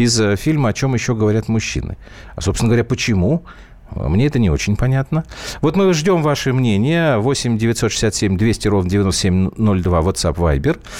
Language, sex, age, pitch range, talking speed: Russian, male, 40-59, 95-145 Hz, 145 wpm